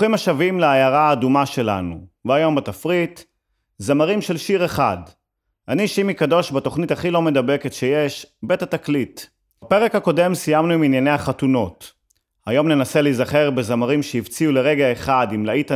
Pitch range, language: 125-165 Hz, Hebrew